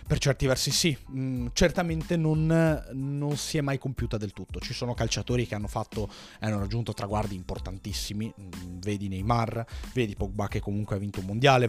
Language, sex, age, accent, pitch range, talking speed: Italian, male, 20-39, native, 110-135 Hz, 170 wpm